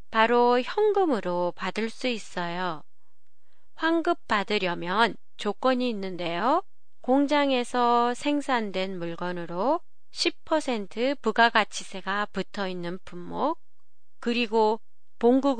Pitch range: 190-260 Hz